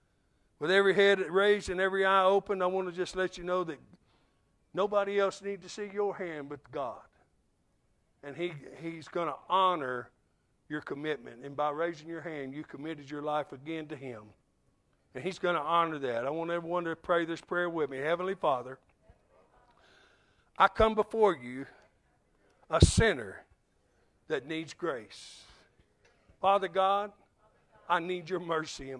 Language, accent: English, American